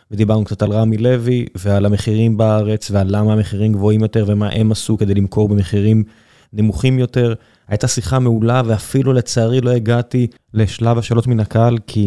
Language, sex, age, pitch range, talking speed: Hebrew, male, 20-39, 105-125 Hz, 165 wpm